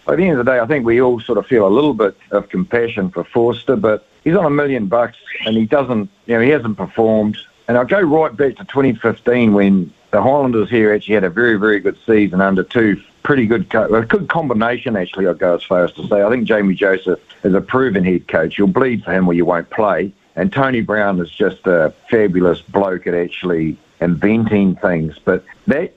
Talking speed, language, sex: 220 wpm, English, male